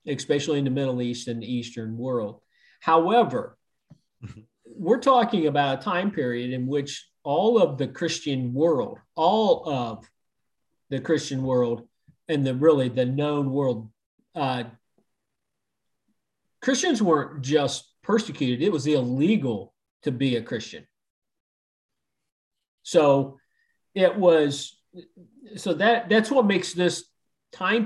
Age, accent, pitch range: 40-59, American, 130-185 Hz